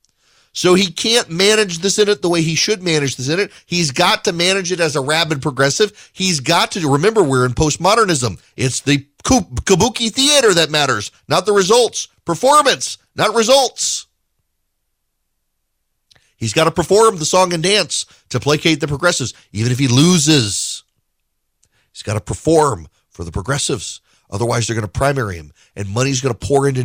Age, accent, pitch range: 40-59, American, 120-195 Hz